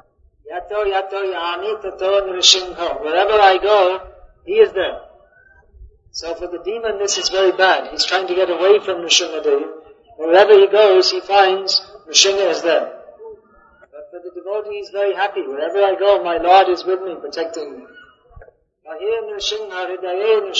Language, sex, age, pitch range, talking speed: English, male, 50-69, 180-220 Hz, 145 wpm